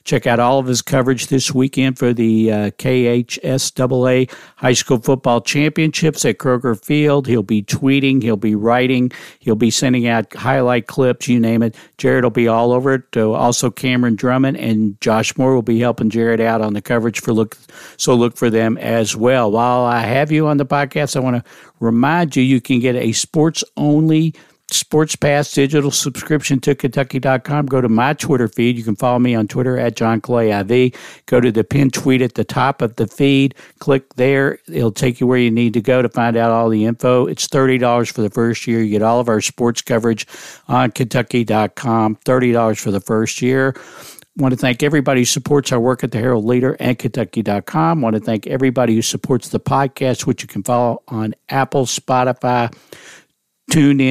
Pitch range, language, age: 115-135 Hz, English, 50-69